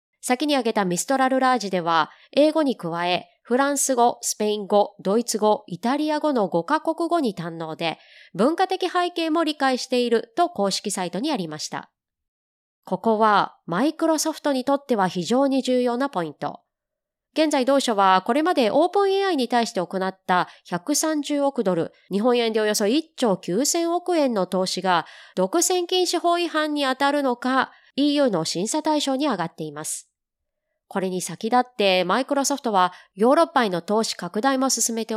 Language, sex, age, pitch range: Japanese, female, 20-39, 190-295 Hz